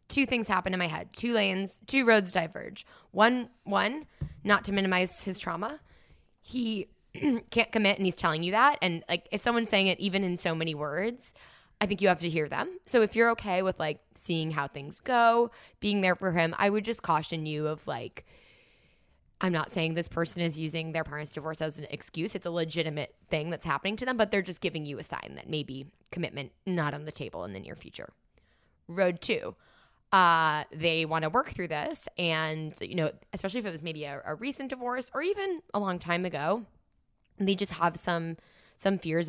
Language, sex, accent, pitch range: English, female, American, 160-210 Hz